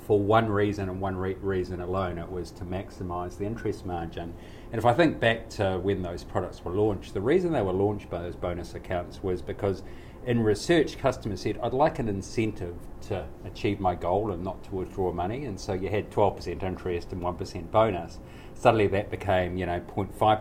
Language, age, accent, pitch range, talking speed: English, 40-59, Australian, 90-110 Hz, 210 wpm